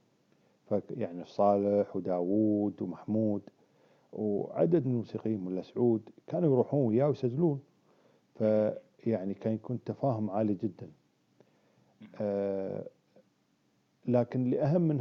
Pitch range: 105-125 Hz